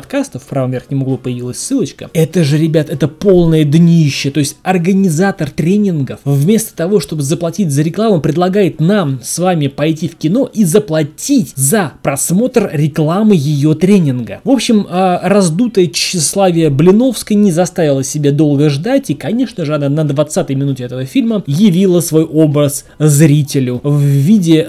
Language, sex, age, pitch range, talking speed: Russian, male, 20-39, 140-190 Hz, 150 wpm